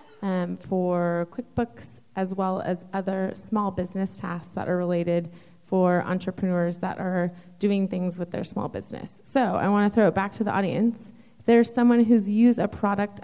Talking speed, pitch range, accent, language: 180 wpm, 185-210 Hz, American, English